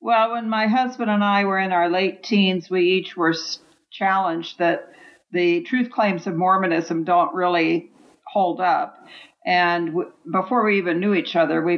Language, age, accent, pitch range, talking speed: English, 60-79, American, 170-205 Hz, 170 wpm